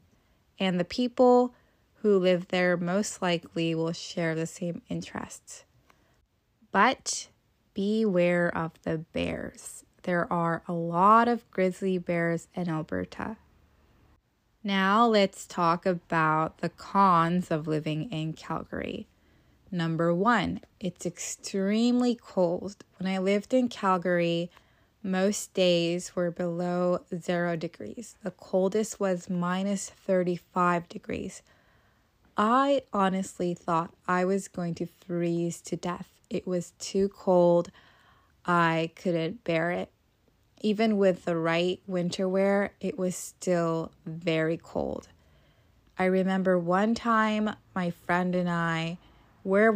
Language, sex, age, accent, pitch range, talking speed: English, female, 20-39, American, 170-195 Hz, 115 wpm